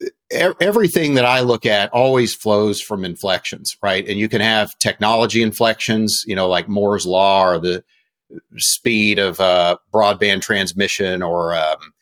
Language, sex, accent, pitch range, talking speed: English, male, American, 95-115 Hz, 150 wpm